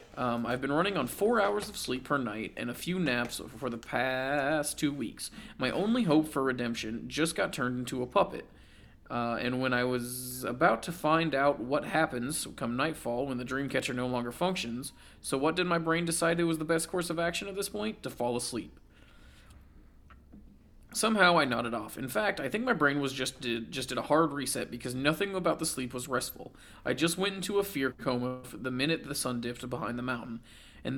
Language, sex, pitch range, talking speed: English, male, 120-160 Hz, 215 wpm